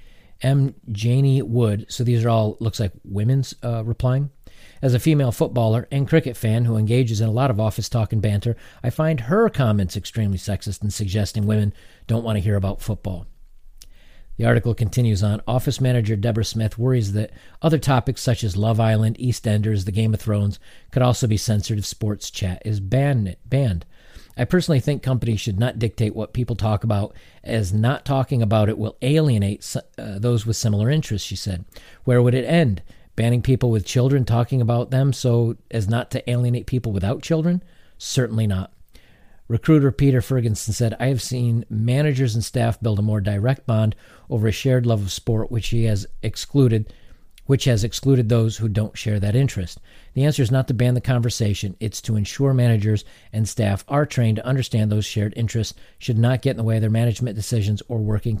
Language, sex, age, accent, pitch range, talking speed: English, male, 40-59, American, 105-130 Hz, 190 wpm